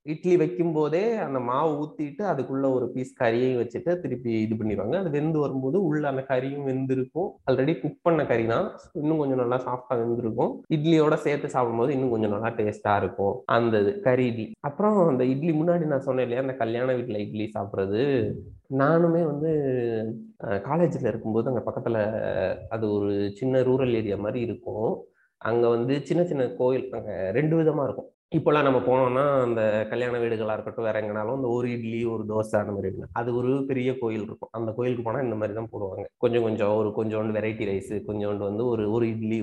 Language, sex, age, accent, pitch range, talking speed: Tamil, male, 20-39, native, 110-135 Hz, 180 wpm